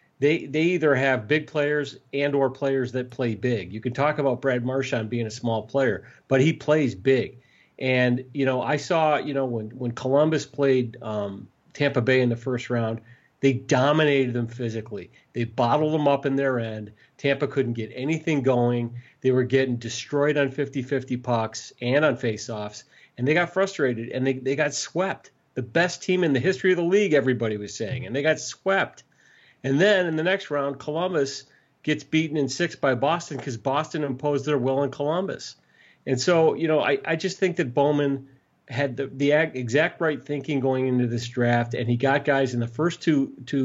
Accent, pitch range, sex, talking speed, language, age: American, 120-145 Hz, male, 200 wpm, English, 40-59